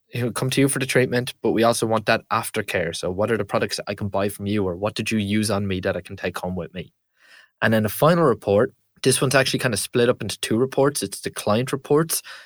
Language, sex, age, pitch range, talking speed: English, male, 20-39, 100-130 Hz, 270 wpm